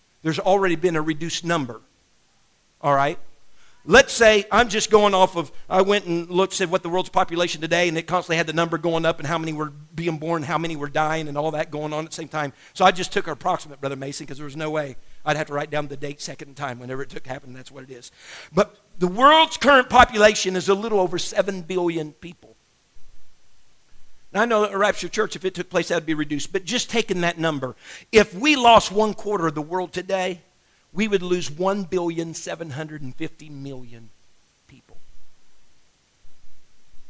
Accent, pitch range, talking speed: American, 140-185 Hz, 210 wpm